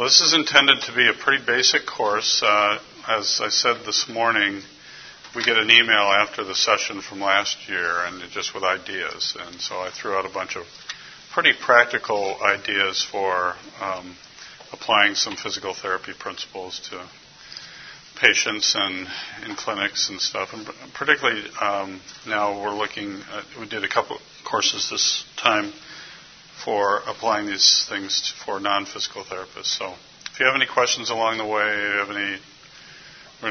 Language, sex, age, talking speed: English, male, 50-69, 160 wpm